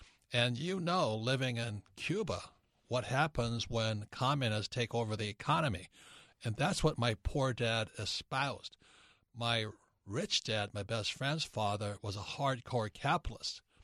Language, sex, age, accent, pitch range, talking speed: English, male, 60-79, American, 110-140 Hz, 140 wpm